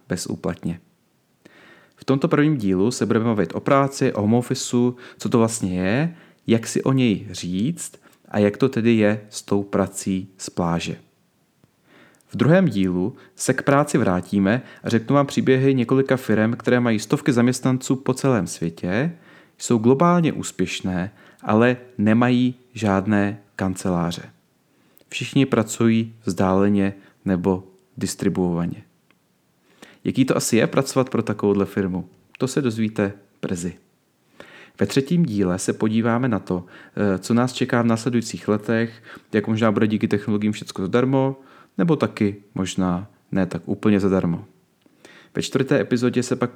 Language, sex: Czech, male